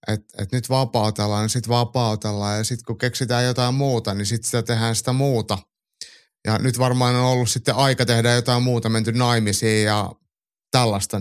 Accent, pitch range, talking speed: native, 110-135 Hz, 170 wpm